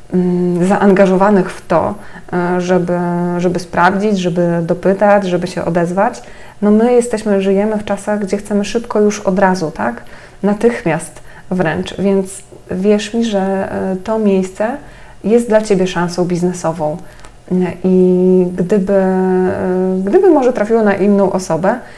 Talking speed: 125 wpm